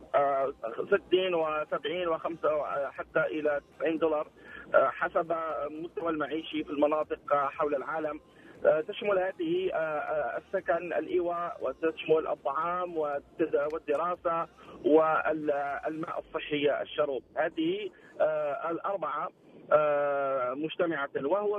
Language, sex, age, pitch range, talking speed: Arabic, male, 40-59, 150-180 Hz, 85 wpm